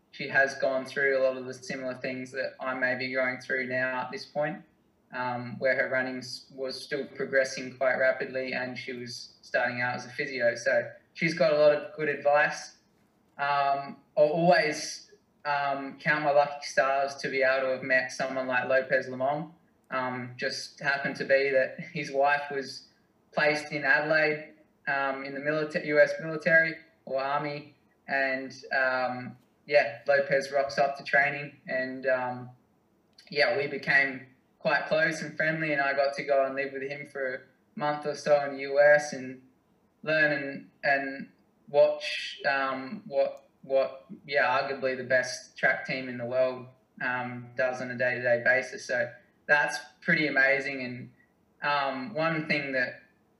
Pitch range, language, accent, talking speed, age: 130-145 Hz, English, Australian, 165 wpm, 20-39